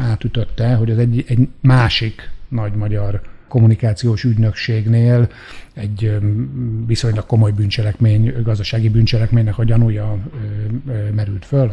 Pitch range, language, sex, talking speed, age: 105-125 Hz, Hungarian, male, 100 wpm, 60-79